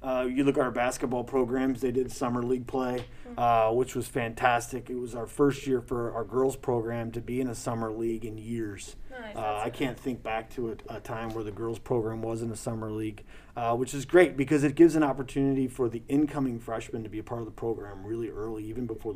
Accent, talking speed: American, 235 wpm